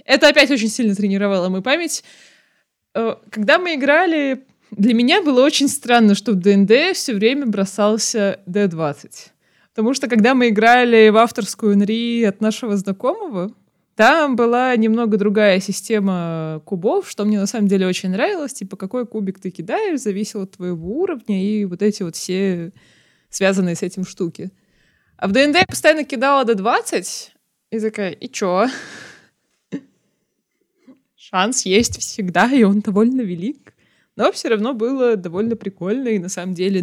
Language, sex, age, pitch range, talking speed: Russian, female, 20-39, 185-225 Hz, 150 wpm